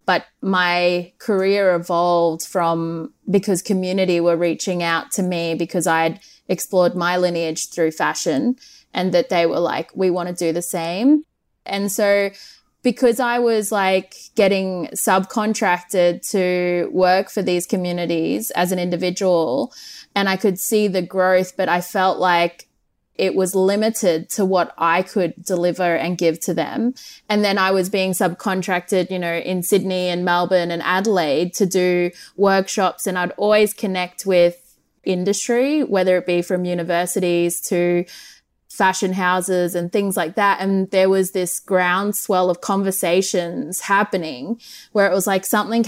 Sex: female